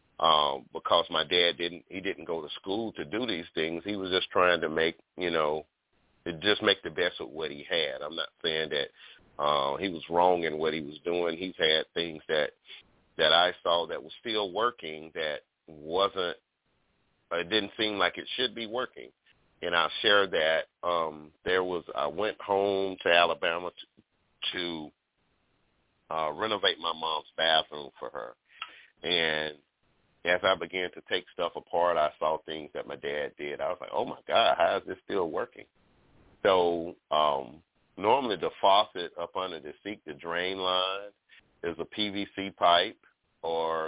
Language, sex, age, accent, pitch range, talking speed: English, male, 40-59, American, 80-100 Hz, 170 wpm